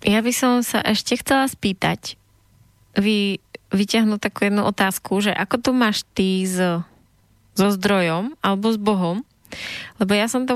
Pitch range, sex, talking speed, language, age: 190-220 Hz, female, 155 wpm, Slovak, 20-39